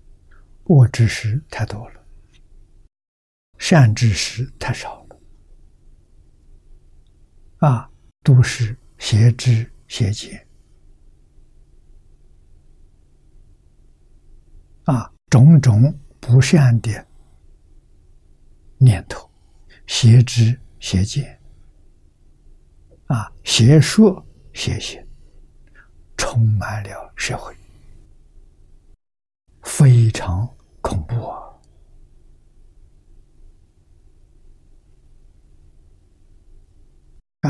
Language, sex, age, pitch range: Chinese, male, 60-79, 75-115 Hz